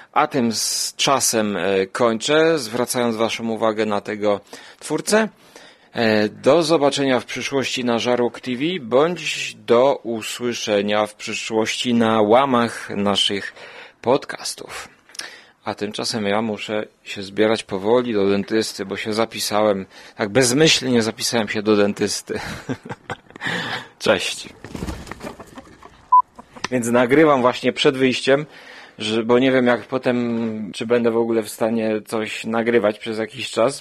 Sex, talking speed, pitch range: male, 120 wpm, 105-125 Hz